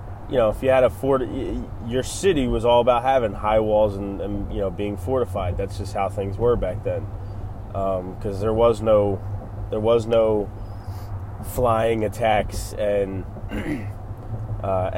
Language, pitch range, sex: English, 100-115 Hz, male